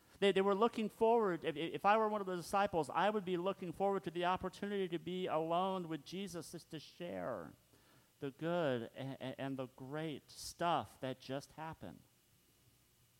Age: 50-69